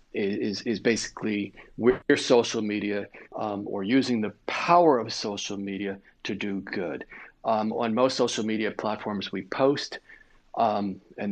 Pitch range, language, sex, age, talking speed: 100-115 Hz, English, male, 40-59, 150 wpm